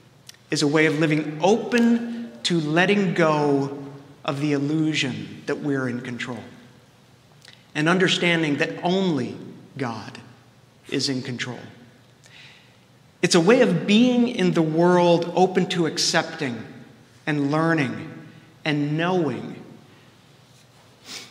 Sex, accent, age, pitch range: male, American, 50-69, 130-165 Hz